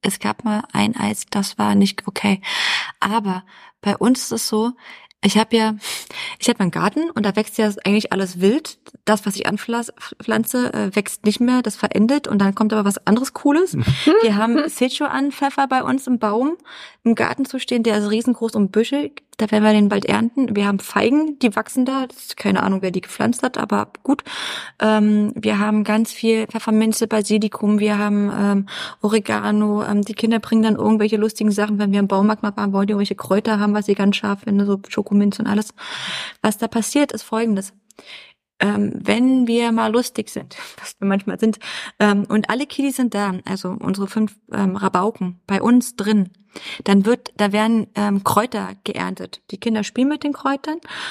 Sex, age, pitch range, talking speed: female, 20-39, 205-240 Hz, 190 wpm